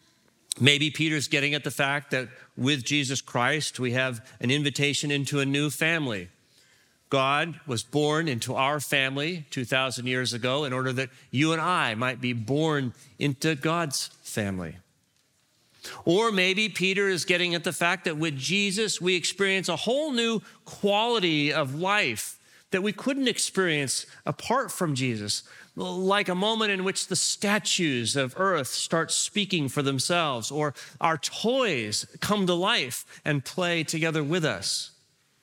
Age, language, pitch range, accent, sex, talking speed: 40-59, English, 130-180 Hz, American, male, 150 wpm